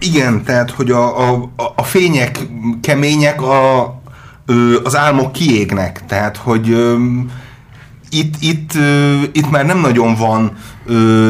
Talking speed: 135 wpm